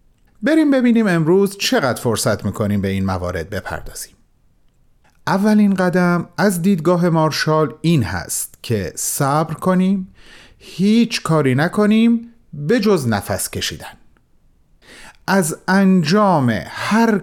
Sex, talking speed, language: male, 105 wpm, Persian